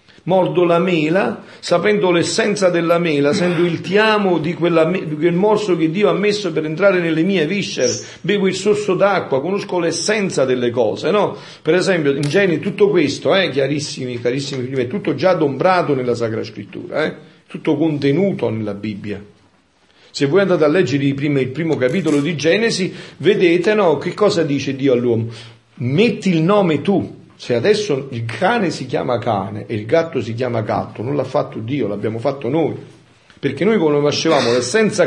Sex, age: male, 50-69